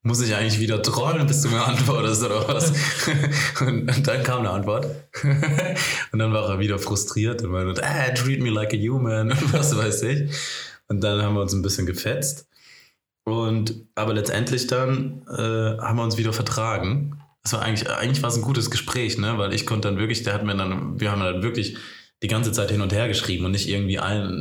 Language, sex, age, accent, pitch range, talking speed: German, male, 20-39, German, 105-130 Hz, 210 wpm